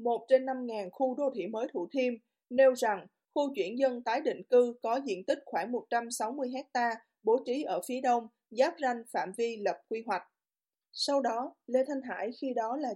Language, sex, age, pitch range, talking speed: Vietnamese, female, 20-39, 230-275 Hz, 195 wpm